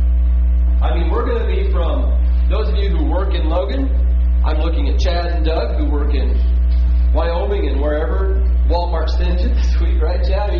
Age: 40-59